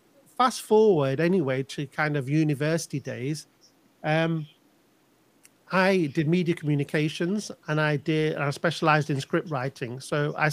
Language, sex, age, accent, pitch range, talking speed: English, male, 40-59, British, 145-170 Hz, 130 wpm